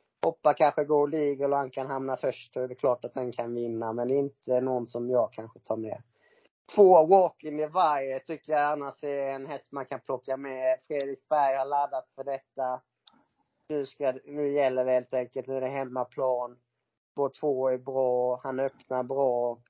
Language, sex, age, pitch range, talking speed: Swedish, male, 30-49, 125-150 Hz, 185 wpm